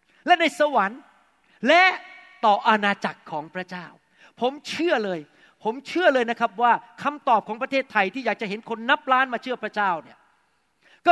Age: 30-49